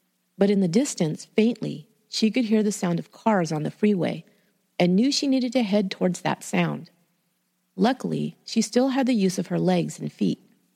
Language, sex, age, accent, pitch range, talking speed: English, female, 40-59, American, 170-220 Hz, 195 wpm